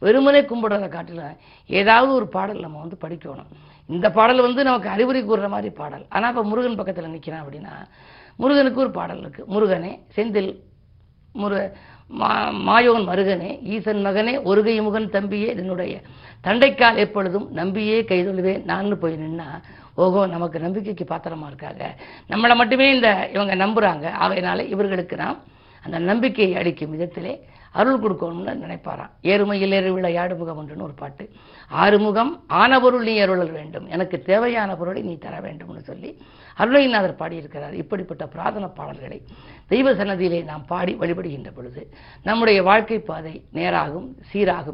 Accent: native